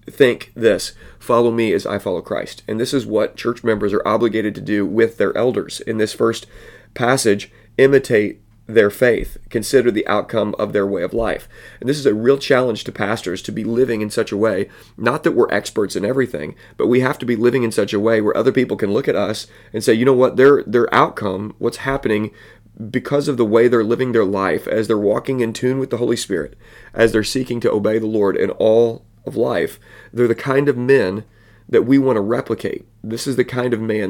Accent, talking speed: American, 225 wpm